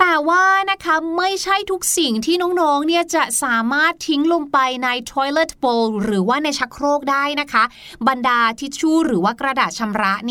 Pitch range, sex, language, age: 220-300 Hz, female, Thai, 30-49